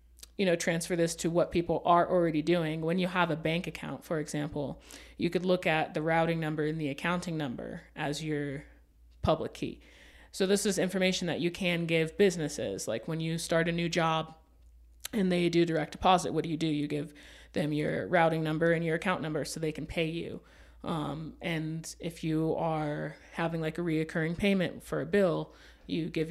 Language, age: English, 30-49